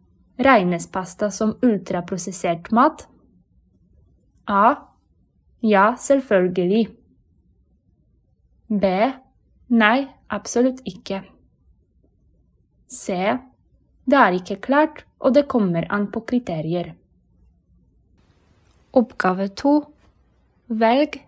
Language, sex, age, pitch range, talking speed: Polish, female, 20-39, 195-255 Hz, 75 wpm